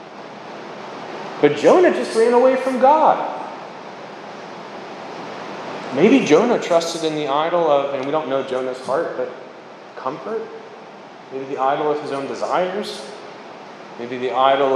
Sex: male